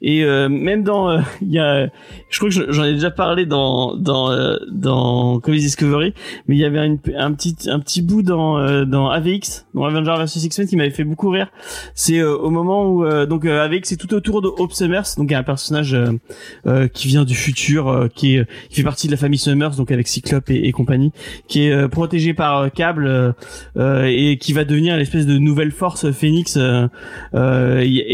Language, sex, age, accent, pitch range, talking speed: French, male, 20-39, French, 135-175 Hz, 225 wpm